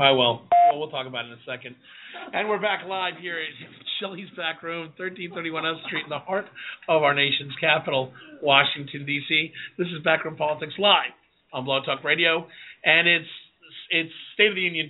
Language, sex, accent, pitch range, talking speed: English, male, American, 145-195 Hz, 185 wpm